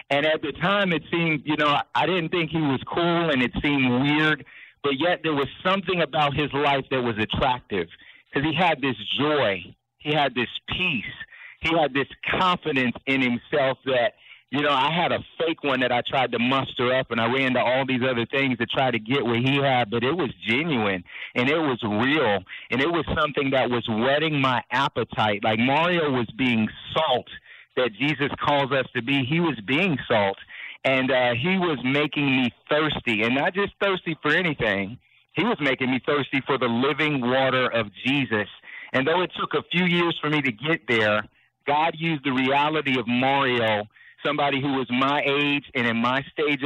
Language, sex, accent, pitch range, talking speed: English, male, American, 125-150 Hz, 200 wpm